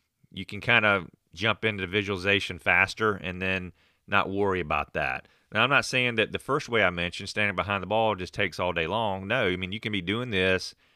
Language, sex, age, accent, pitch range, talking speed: English, male, 40-59, American, 95-110 Hz, 230 wpm